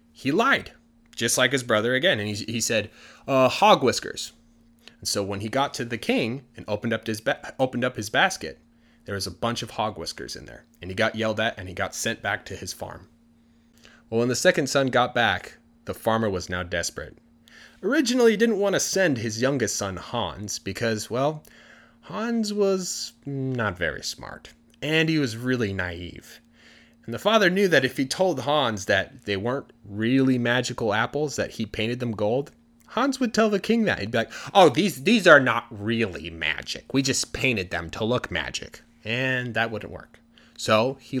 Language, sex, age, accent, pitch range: Chinese, male, 30-49, American, 95-130 Hz